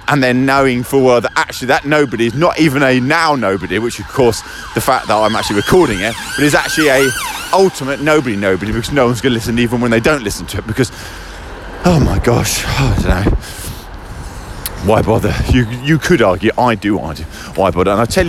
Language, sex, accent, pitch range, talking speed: English, male, British, 90-125 Hz, 225 wpm